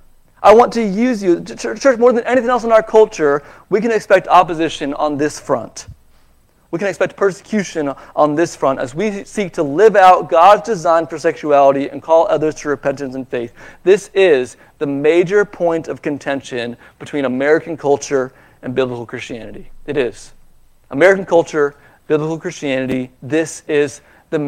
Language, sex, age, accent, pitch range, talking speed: English, male, 40-59, American, 130-165 Hz, 160 wpm